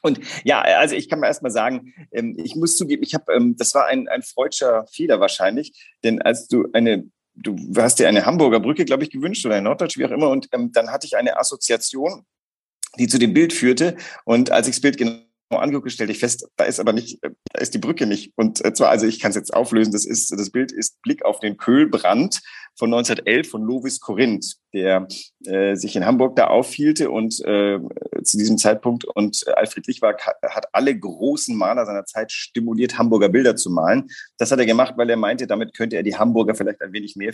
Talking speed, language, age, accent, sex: 215 wpm, German, 40-59, German, male